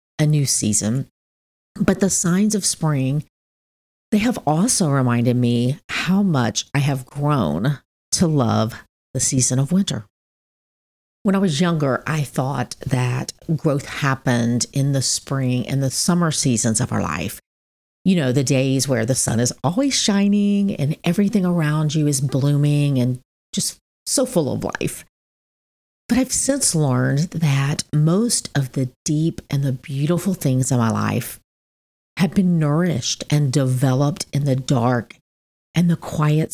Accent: American